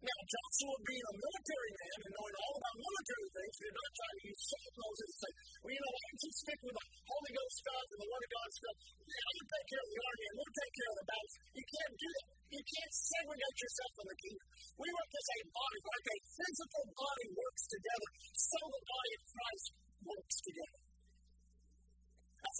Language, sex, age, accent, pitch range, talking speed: English, male, 40-59, American, 215-325 Hz, 220 wpm